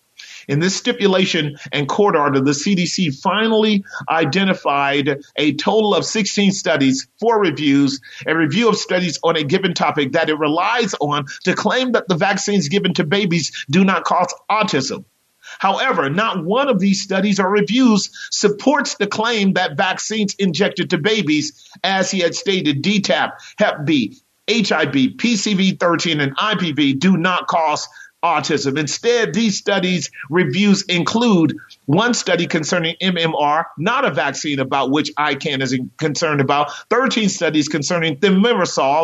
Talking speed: 145 wpm